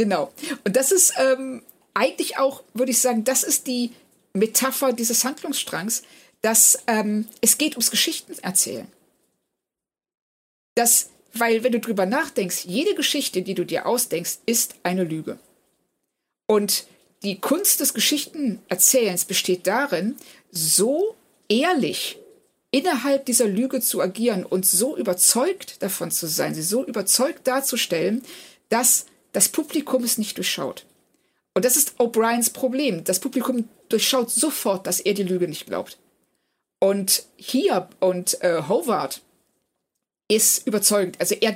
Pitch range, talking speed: 190-265 Hz, 130 wpm